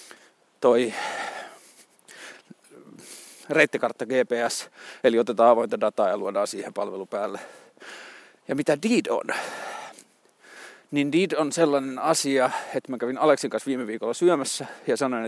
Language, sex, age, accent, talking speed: Finnish, male, 30-49, native, 120 wpm